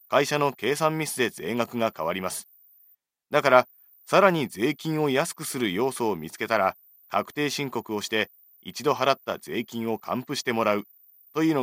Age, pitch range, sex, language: 30-49, 120-155 Hz, male, Japanese